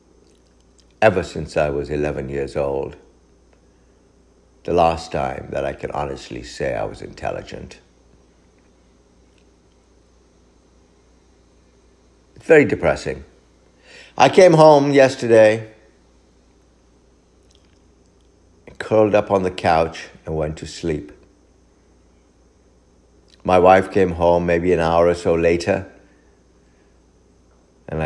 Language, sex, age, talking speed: English, male, 60-79, 95 wpm